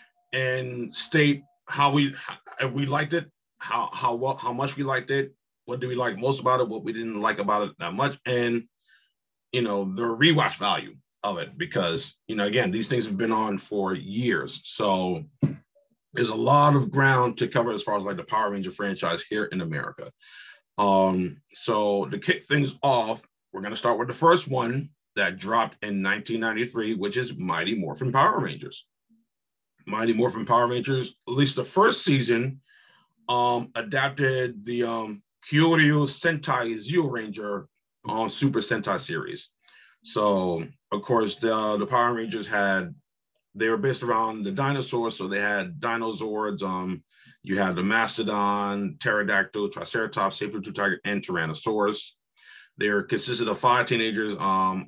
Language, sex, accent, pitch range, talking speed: English, male, American, 105-135 Hz, 160 wpm